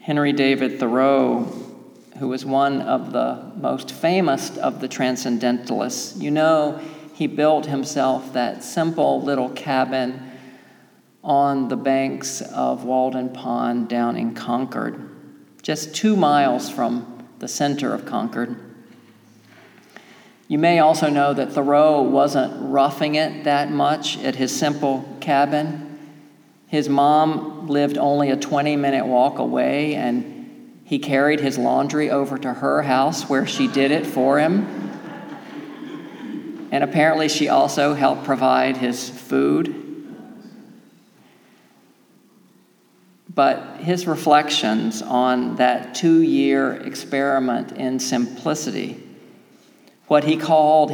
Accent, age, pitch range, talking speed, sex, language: American, 50-69, 130-155 Hz, 115 wpm, male, English